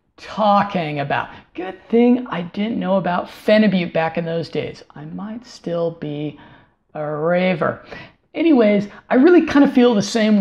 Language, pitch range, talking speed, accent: English, 175-225 Hz, 155 wpm, American